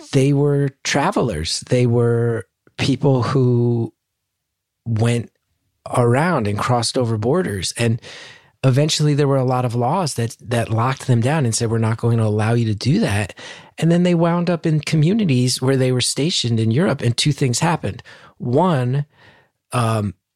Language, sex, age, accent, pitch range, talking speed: English, male, 30-49, American, 120-150 Hz, 165 wpm